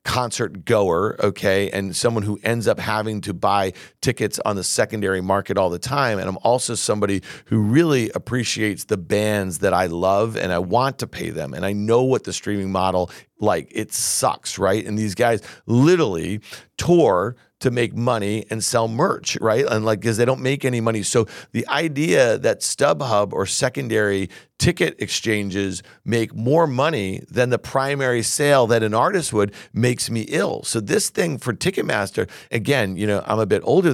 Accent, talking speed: American, 180 wpm